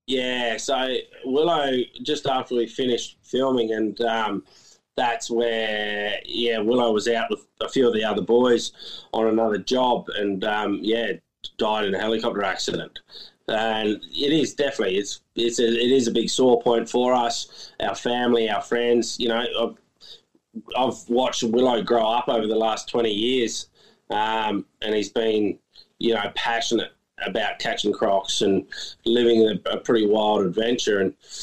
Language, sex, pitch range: English, male, 110-120 Hz